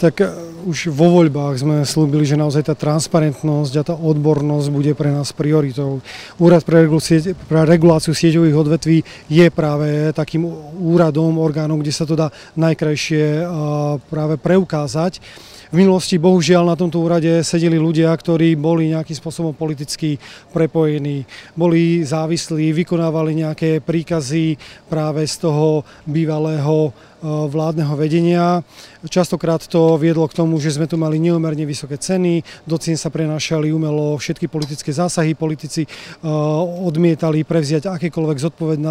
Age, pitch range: 30-49, 155-170 Hz